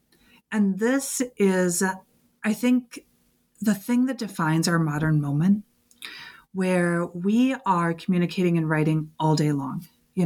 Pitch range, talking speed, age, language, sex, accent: 165-215 Hz, 130 wpm, 30-49, English, female, American